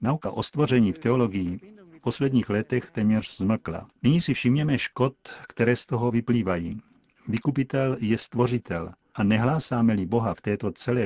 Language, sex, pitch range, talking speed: Czech, male, 105-130 Hz, 145 wpm